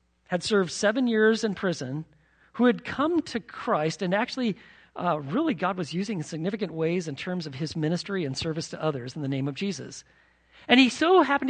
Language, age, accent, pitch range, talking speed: English, 40-59, American, 135-210 Hz, 200 wpm